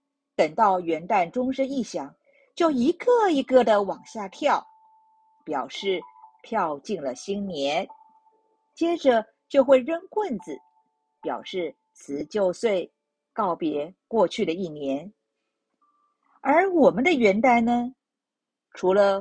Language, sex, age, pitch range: Chinese, female, 50-69, 190-295 Hz